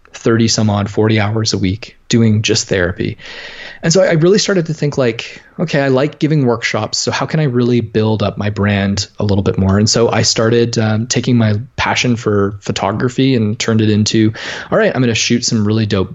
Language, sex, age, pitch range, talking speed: English, male, 20-39, 105-135 Hz, 220 wpm